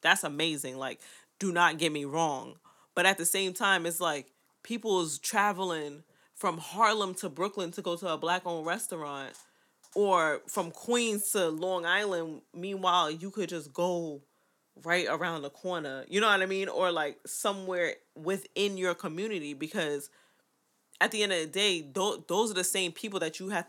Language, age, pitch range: English, 20-39, 155-195 Hz